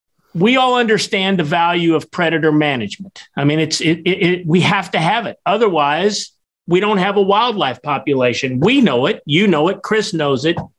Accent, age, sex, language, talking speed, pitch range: American, 50-69, male, English, 195 wpm, 160-200 Hz